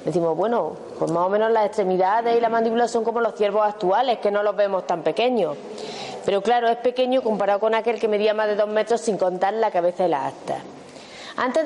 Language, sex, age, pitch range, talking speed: Spanish, female, 30-49, 210-275 Hz, 220 wpm